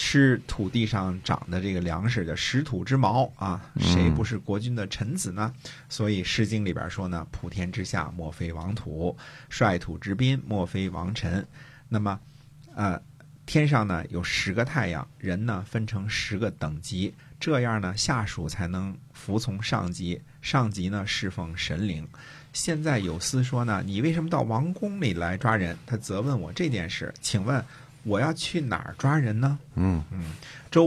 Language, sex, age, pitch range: Chinese, male, 50-69, 95-135 Hz